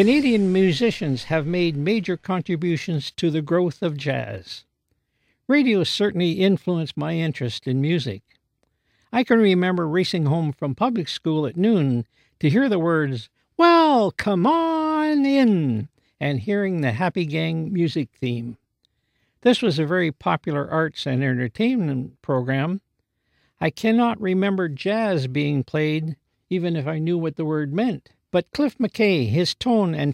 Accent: American